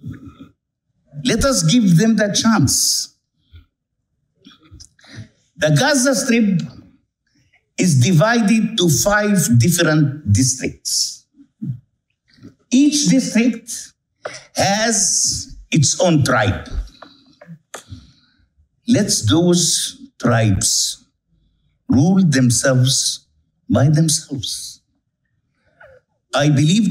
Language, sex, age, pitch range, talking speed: English, male, 60-79, 125-200 Hz, 65 wpm